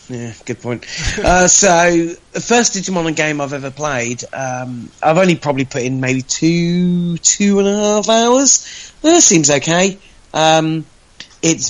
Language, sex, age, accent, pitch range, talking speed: English, male, 30-49, British, 130-165 Hz, 155 wpm